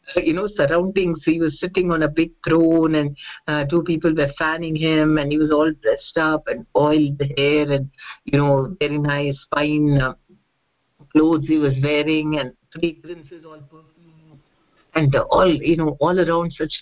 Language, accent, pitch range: English, Indian, 145-180 Hz